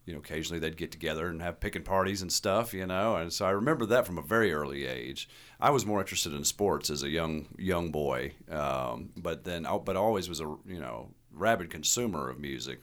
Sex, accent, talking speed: male, American, 225 wpm